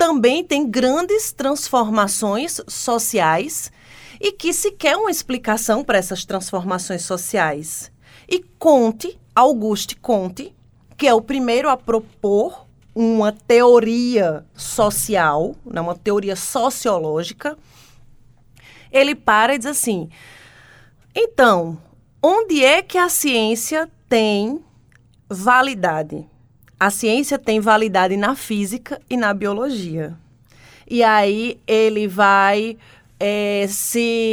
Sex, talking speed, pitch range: female, 105 wpm, 180-250 Hz